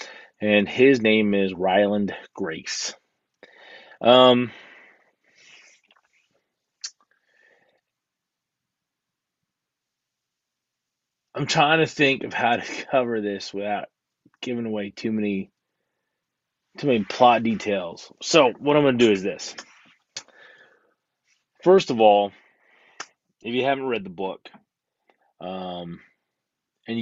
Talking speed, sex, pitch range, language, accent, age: 100 wpm, male, 100-130 Hz, English, American, 30-49